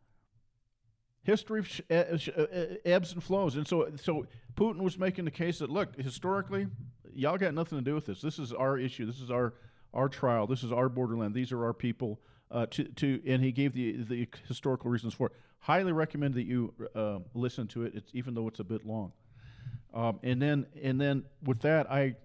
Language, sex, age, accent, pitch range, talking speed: English, male, 40-59, American, 120-145 Hz, 200 wpm